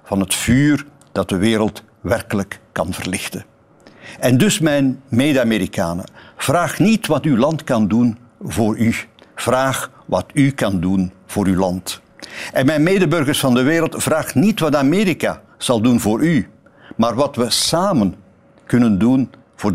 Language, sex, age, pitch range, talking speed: Dutch, male, 60-79, 105-145 Hz, 155 wpm